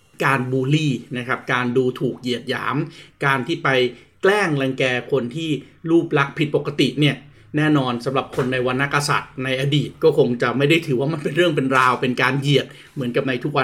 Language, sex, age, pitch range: Thai, male, 30-49, 130-155 Hz